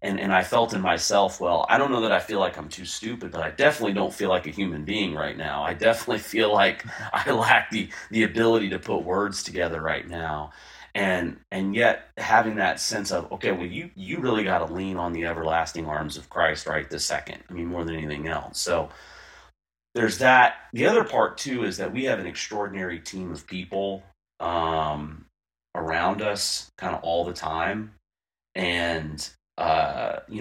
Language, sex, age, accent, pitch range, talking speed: English, male, 30-49, American, 80-95 Hz, 195 wpm